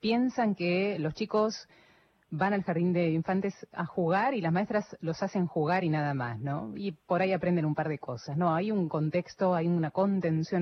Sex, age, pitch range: female, 30-49, 155-200 Hz